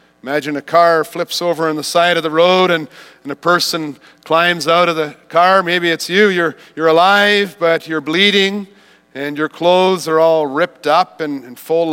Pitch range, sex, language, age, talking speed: 130-205 Hz, male, English, 40-59, 195 wpm